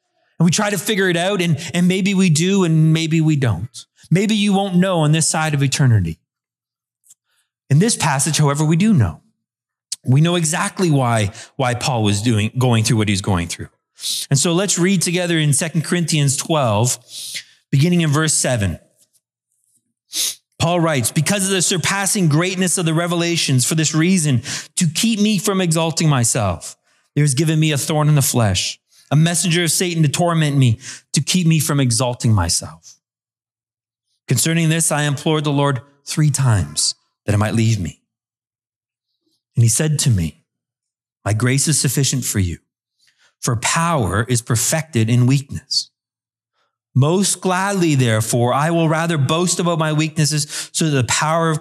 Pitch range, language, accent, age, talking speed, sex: 120-170 Hz, English, American, 30-49, 170 wpm, male